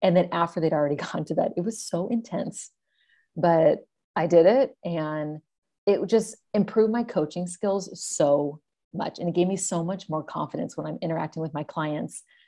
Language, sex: English, female